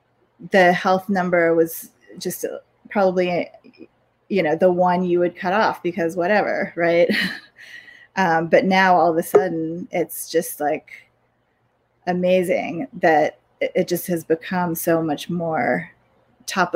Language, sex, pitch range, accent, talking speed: English, female, 175-205 Hz, American, 135 wpm